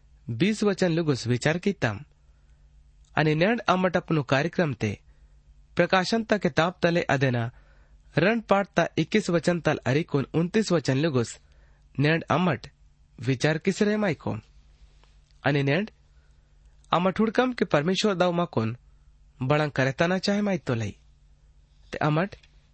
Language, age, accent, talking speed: Hindi, 30-49, native, 100 wpm